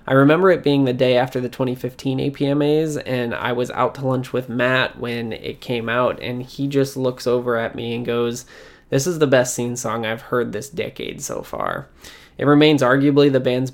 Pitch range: 125-140 Hz